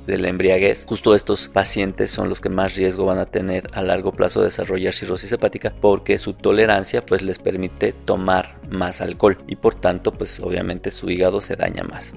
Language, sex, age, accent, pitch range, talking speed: Spanish, male, 20-39, Mexican, 90-100 Hz, 195 wpm